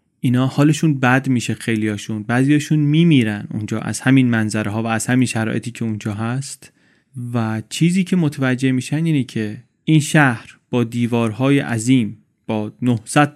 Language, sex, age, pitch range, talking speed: Persian, male, 30-49, 115-145 Hz, 145 wpm